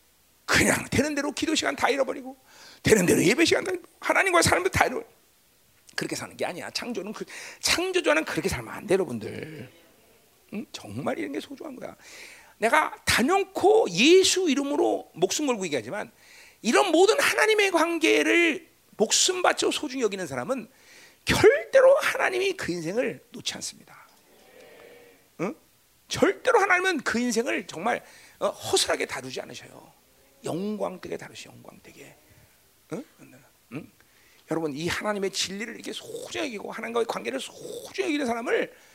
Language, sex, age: Korean, male, 40-59